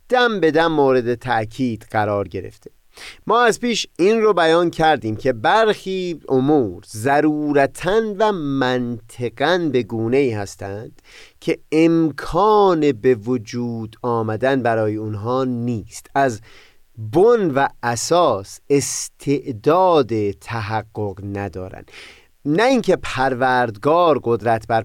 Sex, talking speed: male, 100 wpm